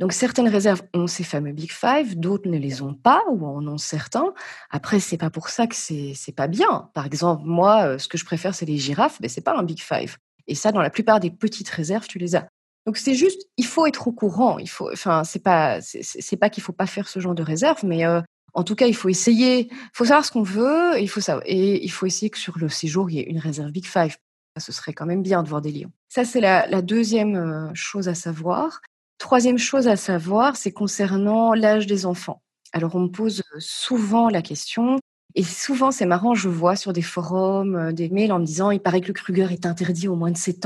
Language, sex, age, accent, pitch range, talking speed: French, female, 30-49, French, 170-225 Hz, 250 wpm